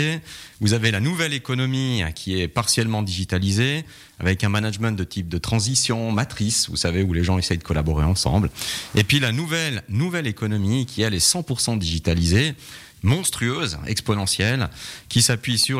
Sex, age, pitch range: male, 40-59, 90-115 Hz